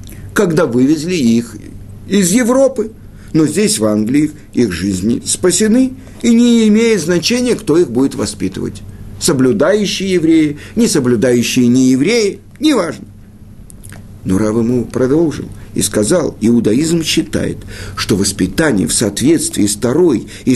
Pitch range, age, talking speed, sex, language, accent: 100-165 Hz, 50-69, 115 wpm, male, Russian, native